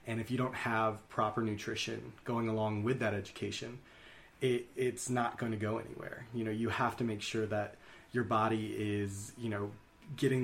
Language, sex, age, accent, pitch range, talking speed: English, male, 20-39, American, 110-120 Hz, 190 wpm